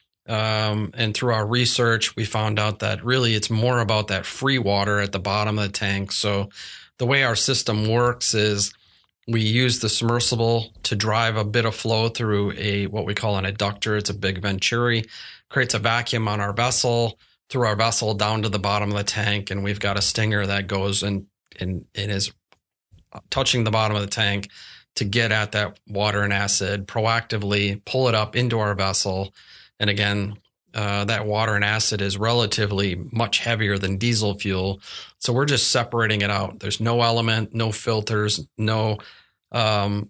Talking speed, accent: 185 wpm, American